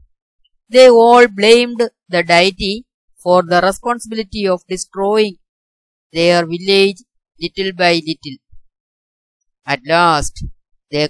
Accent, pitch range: native, 150-195 Hz